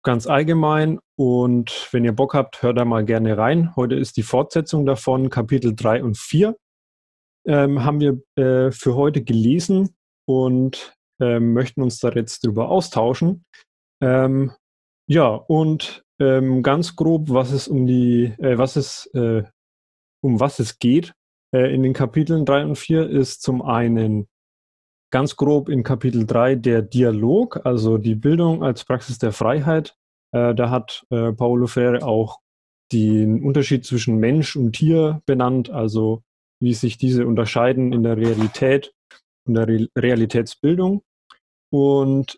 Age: 30-49